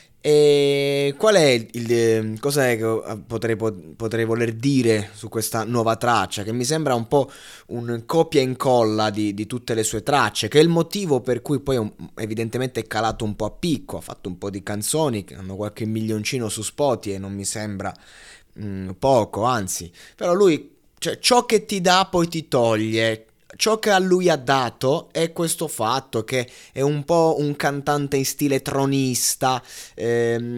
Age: 20-39